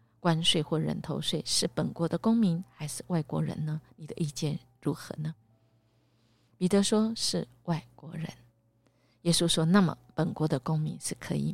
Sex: female